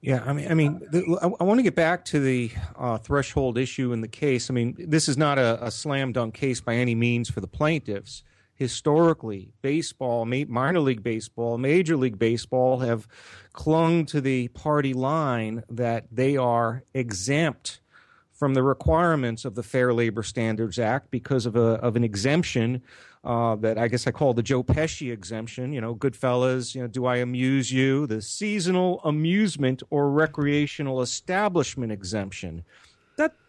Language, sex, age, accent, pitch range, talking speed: English, male, 40-59, American, 120-150 Hz, 170 wpm